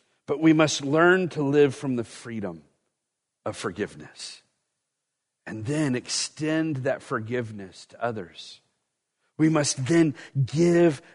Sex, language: male, English